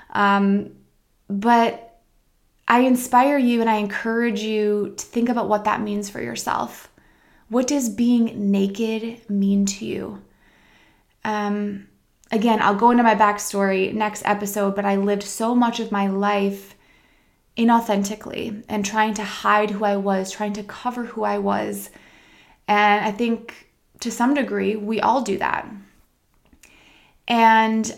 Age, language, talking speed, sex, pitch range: 20-39, English, 140 wpm, female, 200-220 Hz